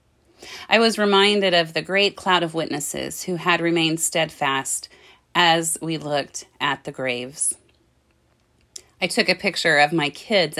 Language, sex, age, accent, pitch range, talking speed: English, female, 30-49, American, 145-190 Hz, 145 wpm